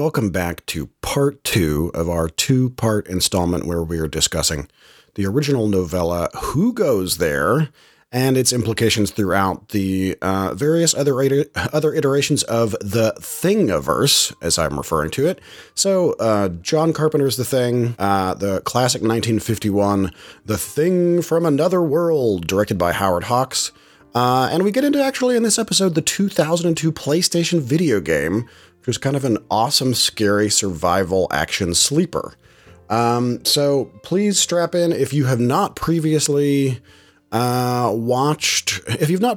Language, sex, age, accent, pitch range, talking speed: English, male, 30-49, American, 100-155 Hz, 145 wpm